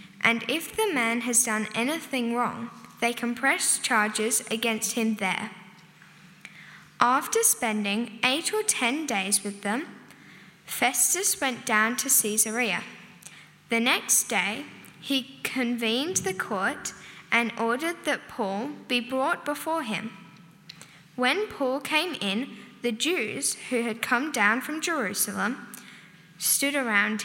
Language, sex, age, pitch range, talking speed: English, female, 10-29, 210-265 Hz, 125 wpm